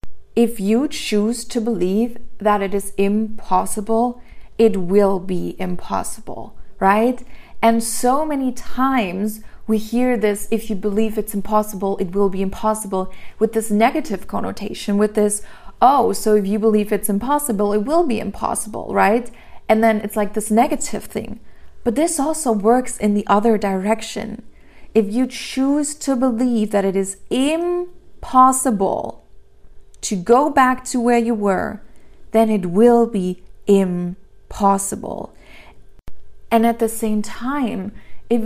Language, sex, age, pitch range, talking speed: English, female, 30-49, 205-240 Hz, 140 wpm